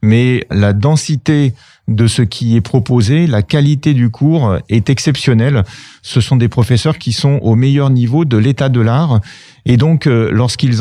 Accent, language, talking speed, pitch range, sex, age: French, French, 165 wpm, 115-145 Hz, male, 40-59